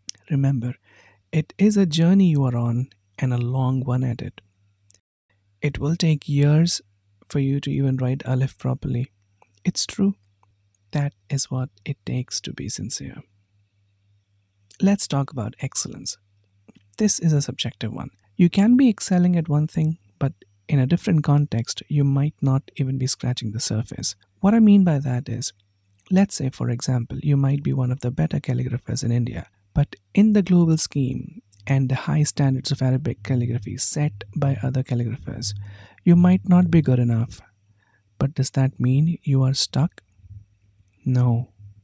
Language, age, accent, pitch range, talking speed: English, 50-69, Indian, 105-145 Hz, 165 wpm